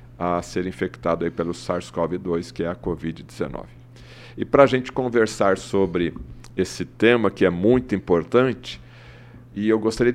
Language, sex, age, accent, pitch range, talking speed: Portuguese, male, 50-69, Brazilian, 95-120 Hz, 150 wpm